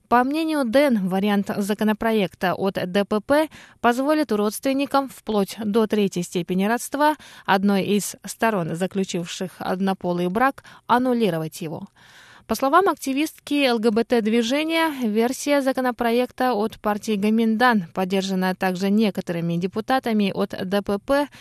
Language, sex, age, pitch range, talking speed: Russian, female, 20-39, 195-250 Hz, 105 wpm